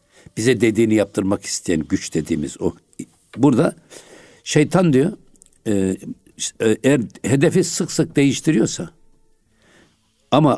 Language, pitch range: Turkish, 110-150 Hz